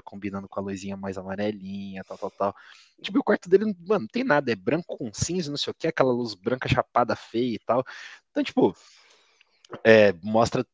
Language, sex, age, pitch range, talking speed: Portuguese, male, 20-39, 110-175 Hz, 200 wpm